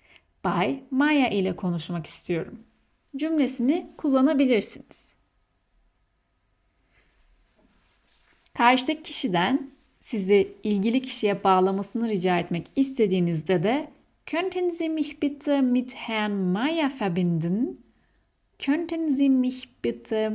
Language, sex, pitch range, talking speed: Turkish, female, 185-270 Hz, 85 wpm